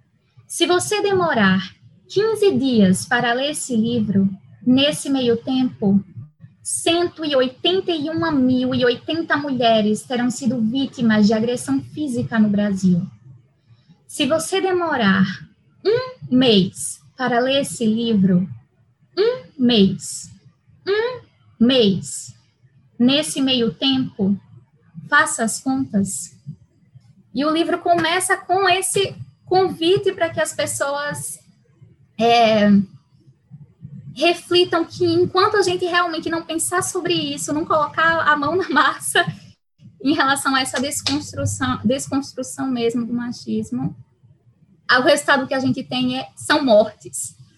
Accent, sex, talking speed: Brazilian, female, 110 wpm